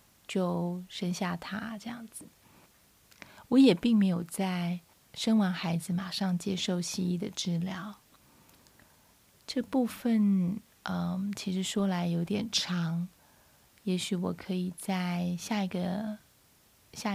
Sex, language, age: female, Chinese, 30-49